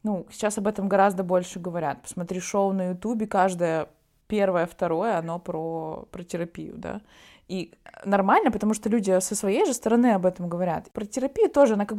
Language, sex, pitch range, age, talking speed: Russian, female, 180-220 Hz, 20-39, 175 wpm